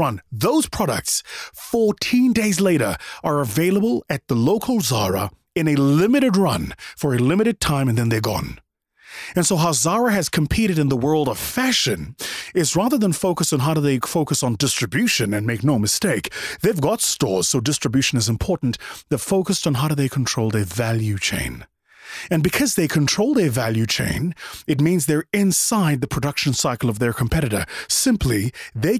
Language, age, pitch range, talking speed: English, 30-49, 120-180 Hz, 180 wpm